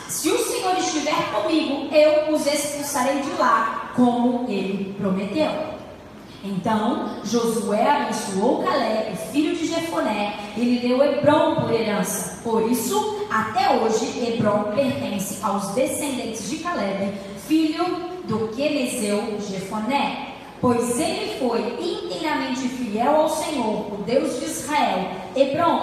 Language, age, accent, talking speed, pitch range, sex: Portuguese, 10-29, Brazilian, 120 wpm, 215-270 Hz, female